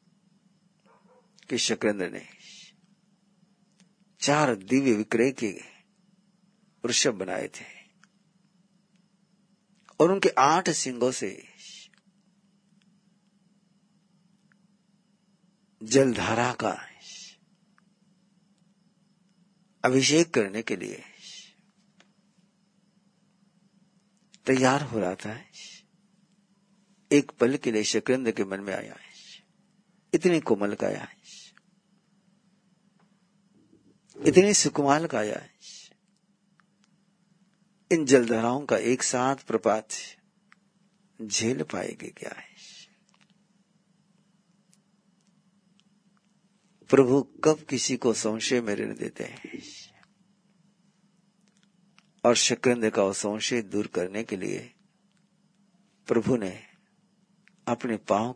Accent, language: native, Hindi